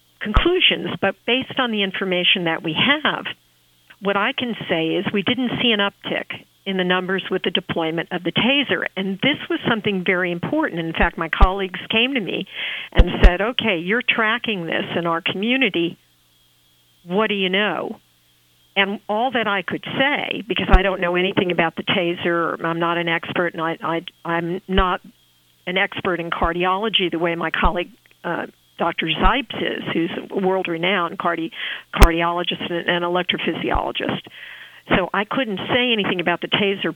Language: English